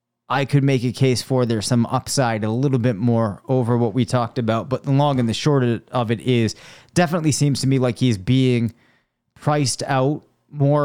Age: 30-49